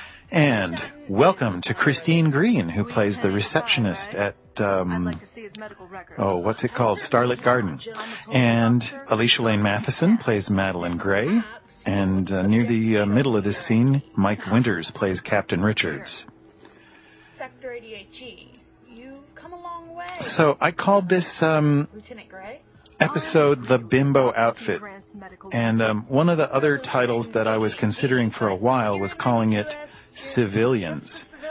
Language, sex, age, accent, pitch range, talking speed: English, male, 40-59, American, 110-155 Hz, 125 wpm